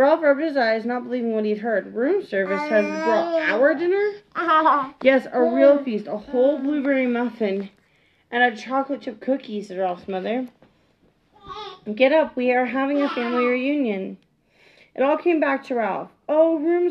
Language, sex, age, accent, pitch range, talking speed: English, female, 30-49, American, 210-275 Hz, 165 wpm